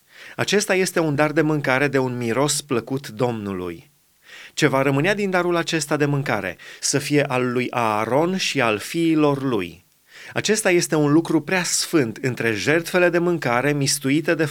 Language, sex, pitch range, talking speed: Romanian, male, 130-165 Hz, 165 wpm